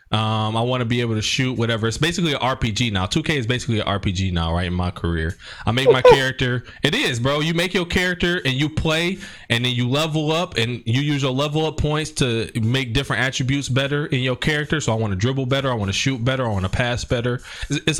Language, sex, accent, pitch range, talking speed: English, male, American, 115-145 Hz, 255 wpm